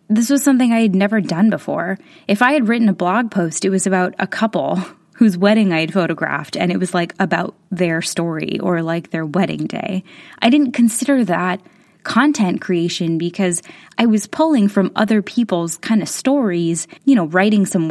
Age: 10-29